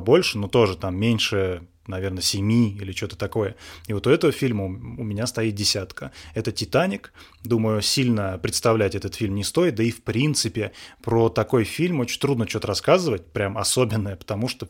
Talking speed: 175 wpm